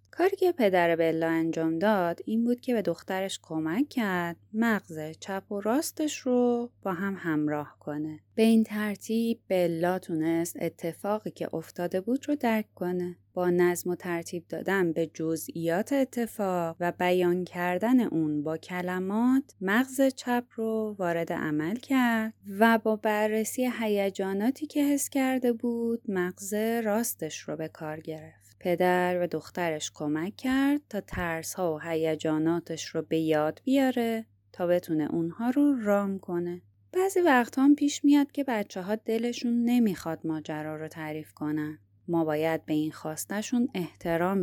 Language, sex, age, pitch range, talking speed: Persian, female, 20-39, 165-230 Hz, 145 wpm